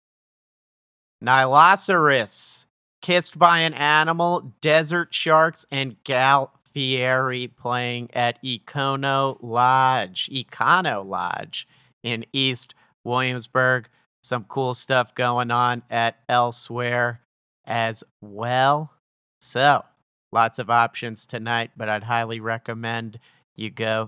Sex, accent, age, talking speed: male, American, 40-59, 95 wpm